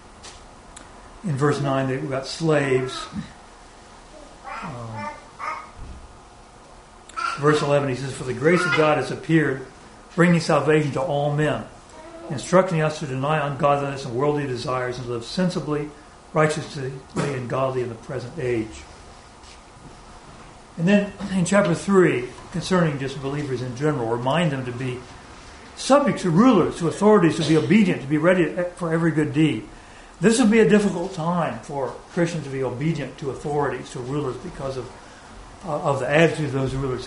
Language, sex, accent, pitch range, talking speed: English, male, American, 135-185 Hz, 150 wpm